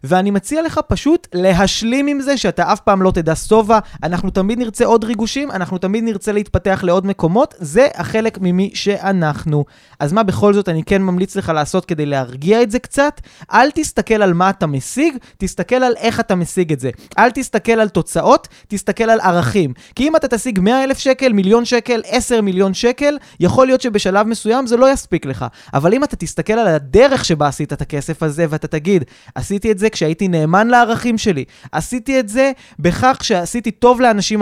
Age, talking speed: 20-39, 165 wpm